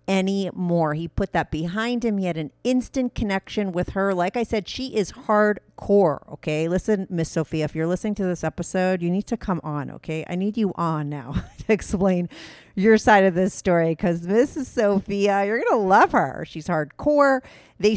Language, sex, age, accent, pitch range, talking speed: English, female, 40-59, American, 170-230 Hz, 195 wpm